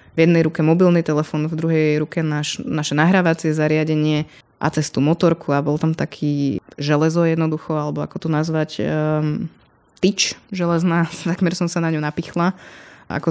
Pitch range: 155-170 Hz